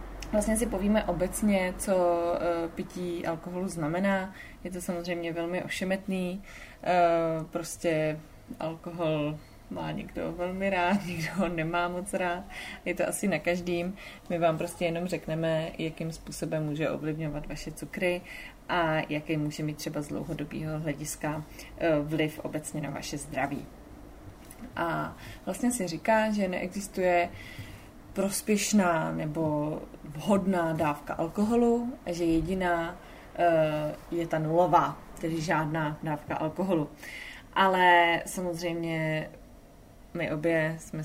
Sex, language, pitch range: female, Czech, 155-180 Hz